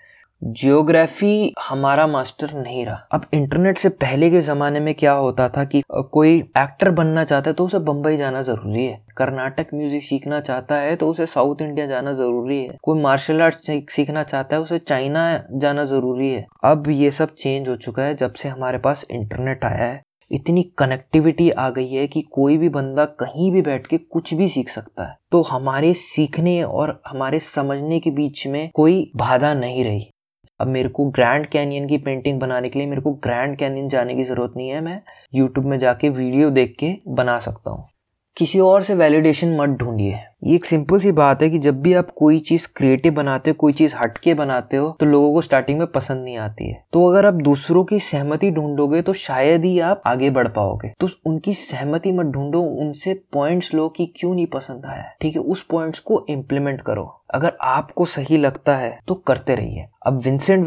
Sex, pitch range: male, 130-160 Hz